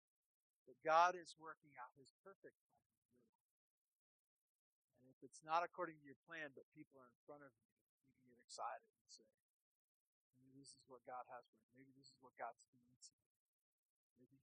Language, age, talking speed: English, 50-69, 185 wpm